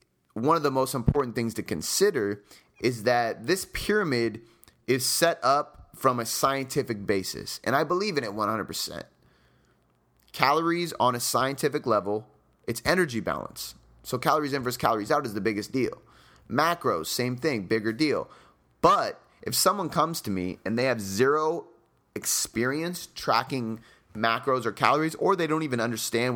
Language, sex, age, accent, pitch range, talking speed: English, male, 30-49, American, 115-140 Hz, 155 wpm